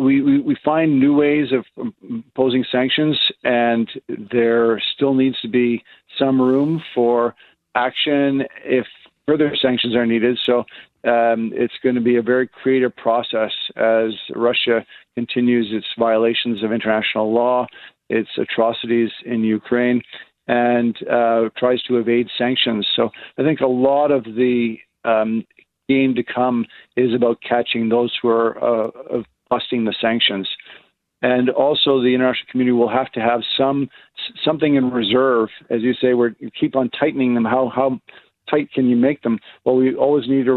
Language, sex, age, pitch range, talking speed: English, male, 50-69, 115-130 Hz, 160 wpm